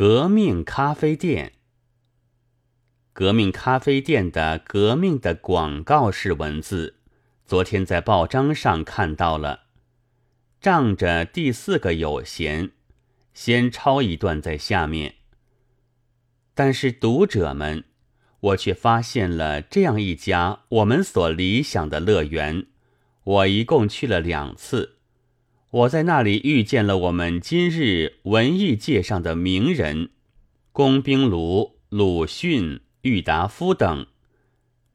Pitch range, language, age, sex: 90-125 Hz, Chinese, 30-49, male